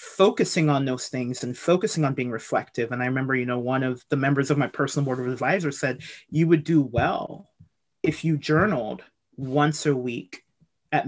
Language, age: English, 30-49